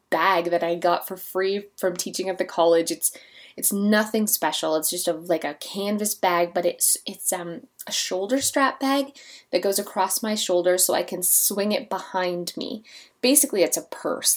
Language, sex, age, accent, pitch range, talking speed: English, female, 20-39, American, 180-245 Hz, 190 wpm